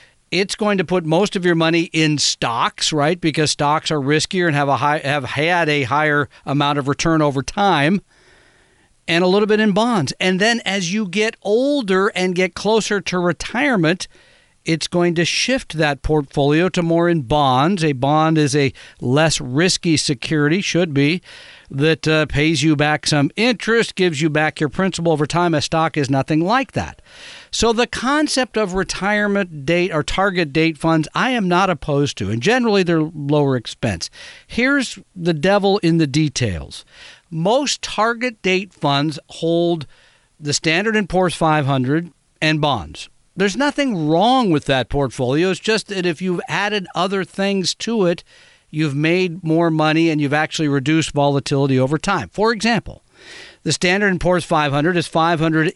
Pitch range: 150-190 Hz